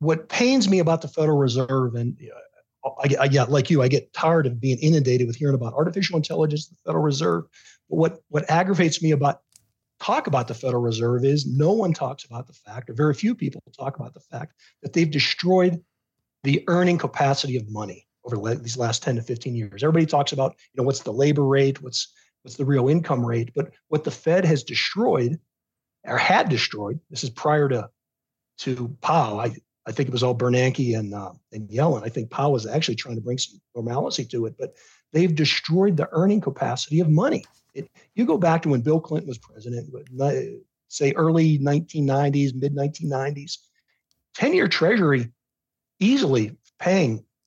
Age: 40-59